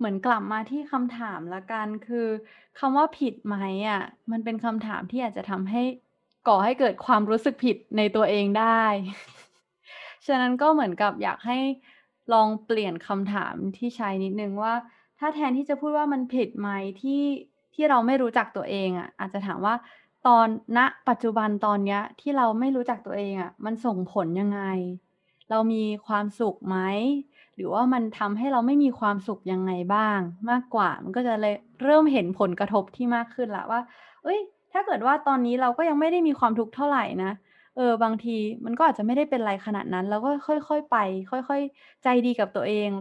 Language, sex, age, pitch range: Thai, female, 20-39, 210-275 Hz